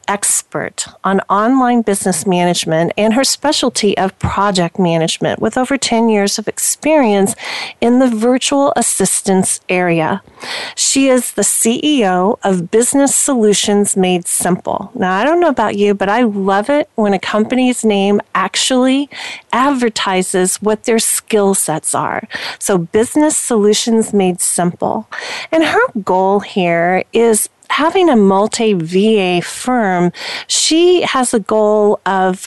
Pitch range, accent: 195-250 Hz, American